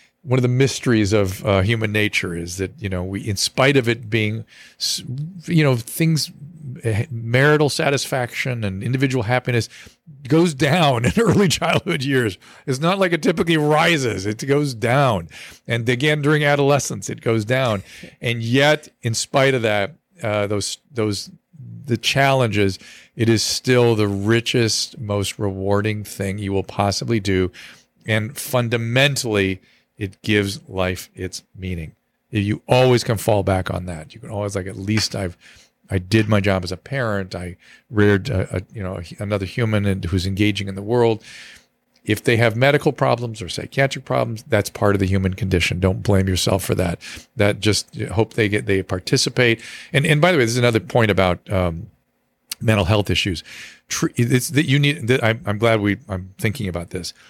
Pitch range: 100-135 Hz